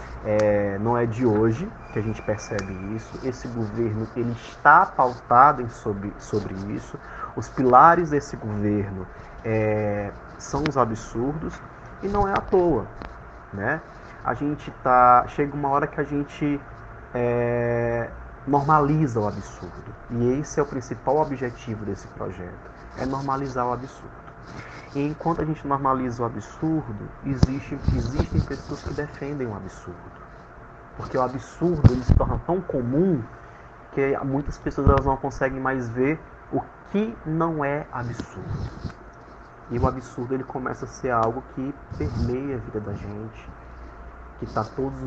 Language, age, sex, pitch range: Portuguese, 30-49, male, 110-140 Hz